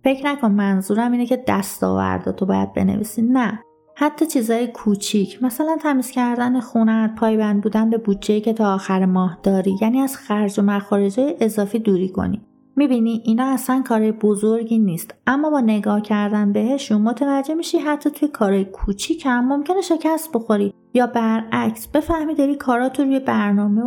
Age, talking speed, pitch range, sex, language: 30-49, 160 wpm, 205-255 Hz, female, Persian